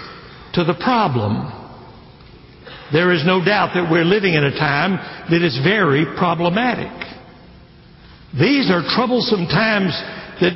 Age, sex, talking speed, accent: 60-79, male, 125 wpm, American